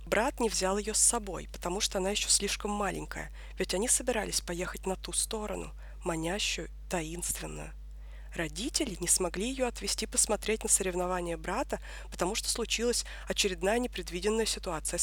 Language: Russian